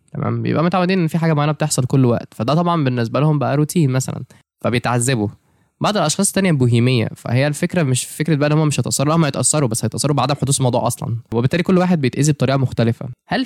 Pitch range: 125-150 Hz